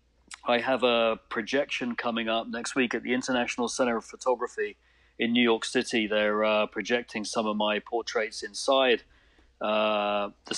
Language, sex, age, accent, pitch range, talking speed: English, male, 40-59, British, 110-125 Hz, 160 wpm